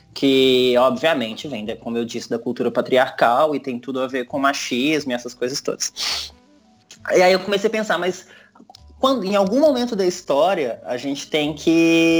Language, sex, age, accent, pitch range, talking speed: Portuguese, male, 20-39, Brazilian, 125-180 Hz, 180 wpm